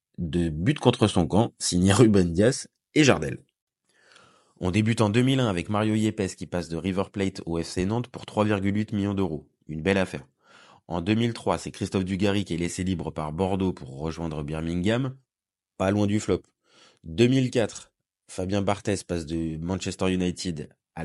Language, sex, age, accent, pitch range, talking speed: French, male, 30-49, French, 85-115 Hz, 165 wpm